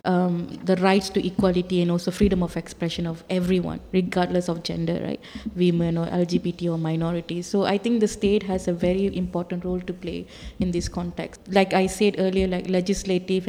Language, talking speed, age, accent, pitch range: English, 185 wpm, 20-39, Indian, 180-200 Hz